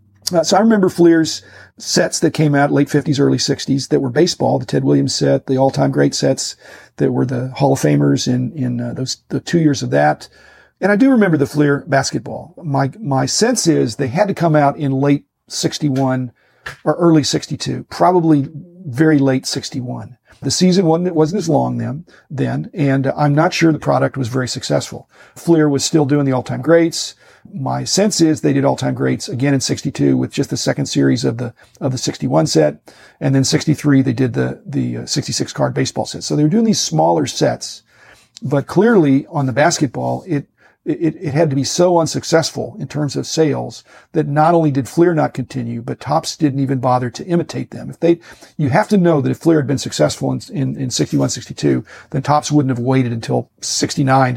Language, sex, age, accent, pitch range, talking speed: English, male, 40-59, American, 125-155 Hz, 205 wpm